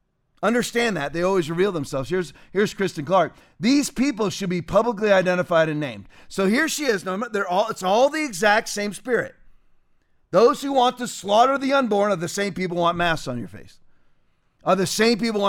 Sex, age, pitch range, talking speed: male, 40-59, 170-215 Hz, 205 wpm